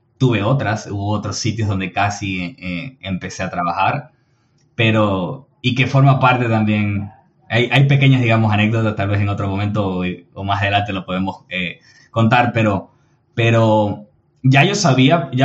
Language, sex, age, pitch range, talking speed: Spanish, male, 20-39, 100-125 Hz, 160 wpm